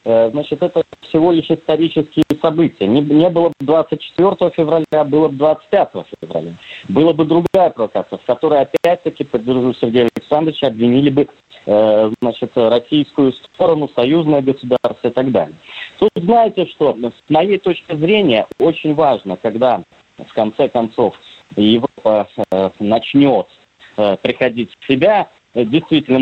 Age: 20-39